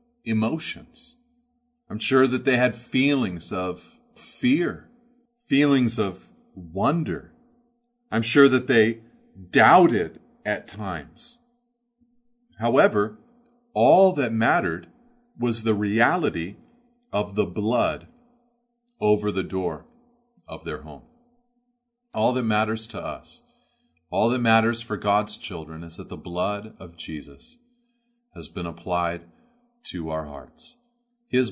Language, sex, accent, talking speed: English, male, American, 110 wpm